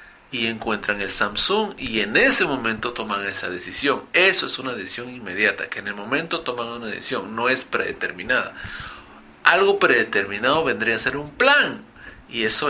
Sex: male